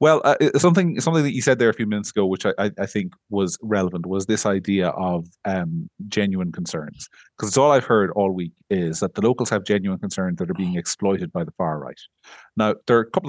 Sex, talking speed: male, 235 wpm